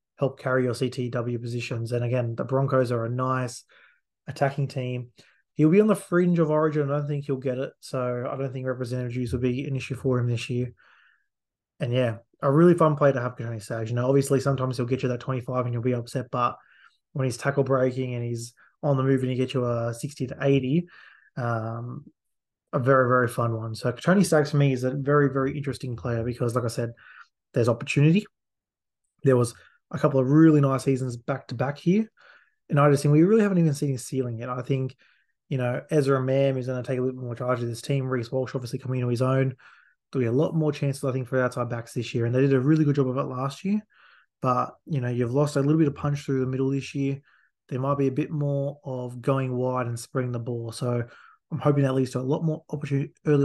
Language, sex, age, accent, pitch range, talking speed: English, male, 20-39, Australian, 125-140 Hz, 240 wpm